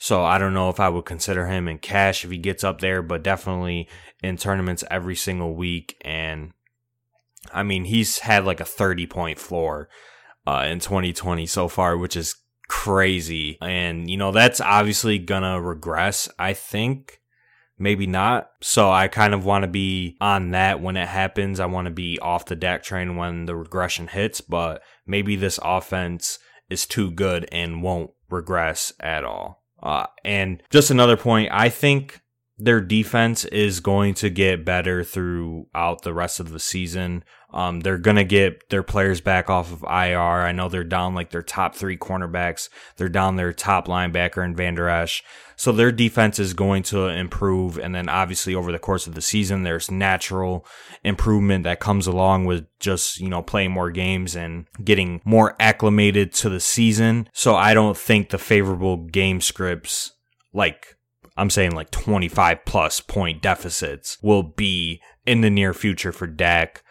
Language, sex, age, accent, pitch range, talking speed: English, male, 20-39, American, 85-100 Hz, 180 wpm